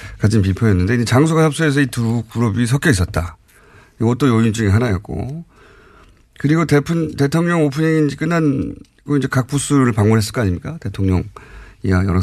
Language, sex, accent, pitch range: Korean, male, native, 100-150 Hz